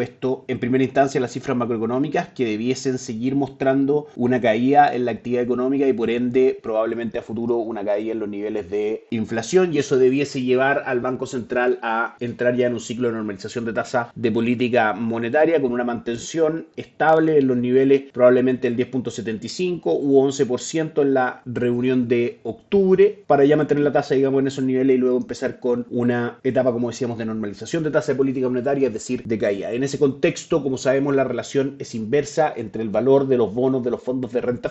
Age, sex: 30-49, male